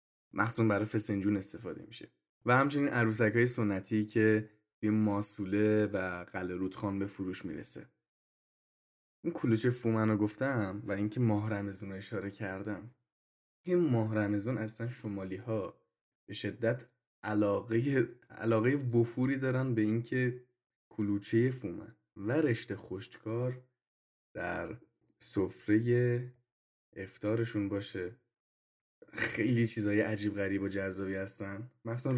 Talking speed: 110 wpm